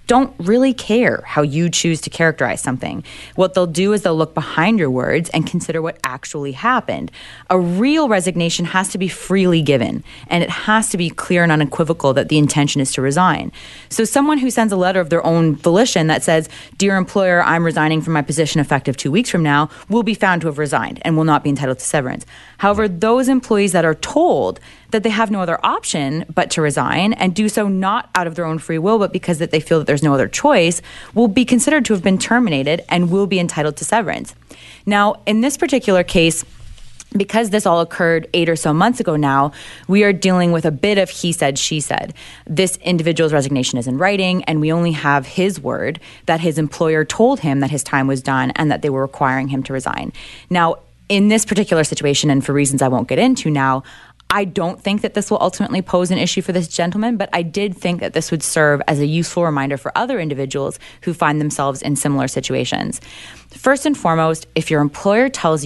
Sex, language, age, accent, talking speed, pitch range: female, English, 20-39, American, 220 wpm, 150-200 Hz